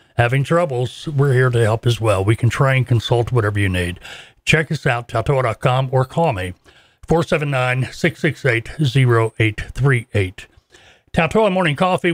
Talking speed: 135 wpm